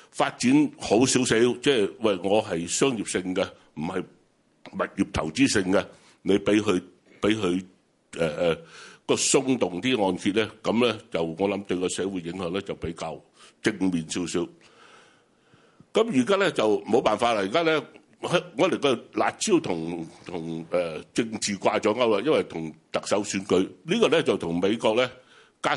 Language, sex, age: Chinese, male, 60-79